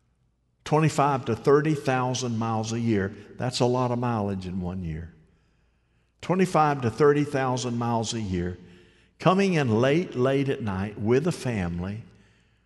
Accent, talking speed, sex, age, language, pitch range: American, 140 wpm, male, 50-69, English, 100-135 Hz